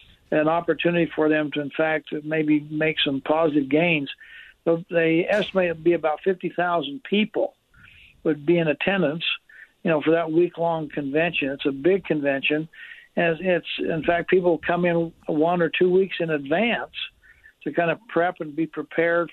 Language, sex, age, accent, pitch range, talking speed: English, male, 60-79, American, 150-170 Hz, 170 wpm